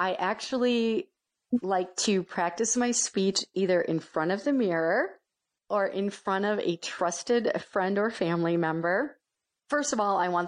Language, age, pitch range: English, 40-59, 170-220 Hz